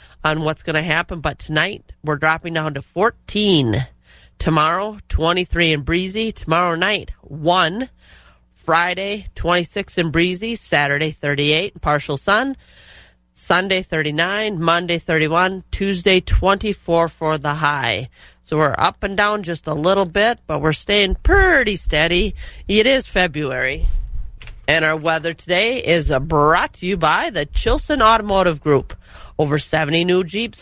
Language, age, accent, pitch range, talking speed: English, 30-49, American, 155-200 Hz, 135 wpm